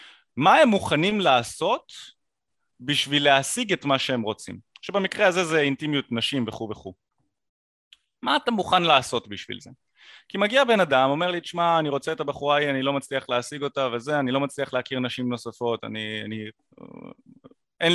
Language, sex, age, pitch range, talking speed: Hebrew, male, 30-49, 130-195 Hz, 165 wpm